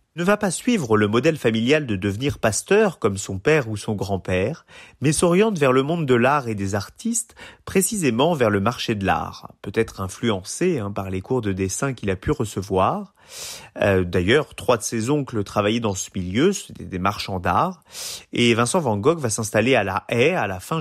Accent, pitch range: French, 100-145 Hz